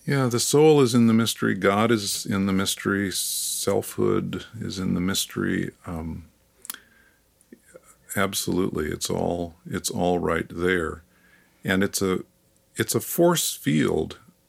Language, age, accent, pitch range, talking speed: English, 50-69, American, 90-115 Hz, 135 wpm